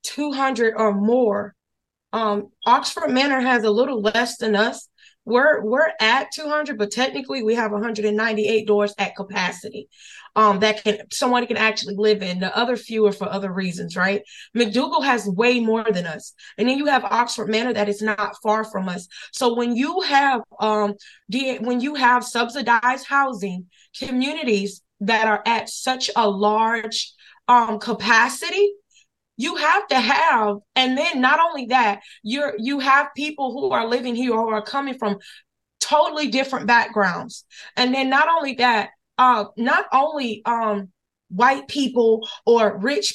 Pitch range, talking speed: 215-260 Hz, 160 wpm